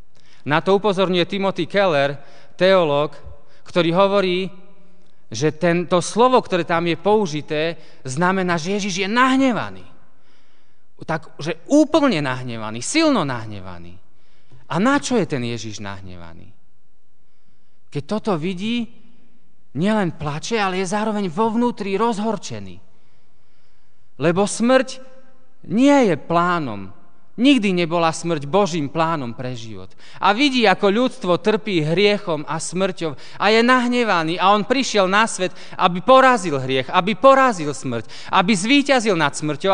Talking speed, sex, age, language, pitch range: 120 wpm, male, 30-49, Slovak, 140-215 Hz